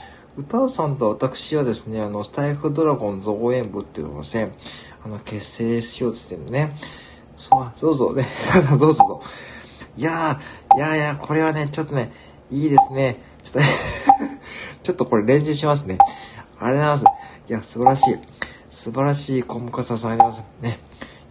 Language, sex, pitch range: Japanese, male, 115-155 Hz